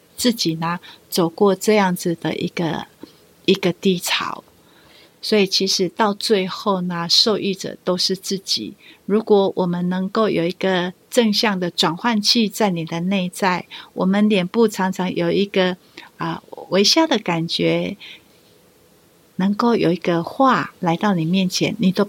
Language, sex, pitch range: Chinese, female, 175-215 Hz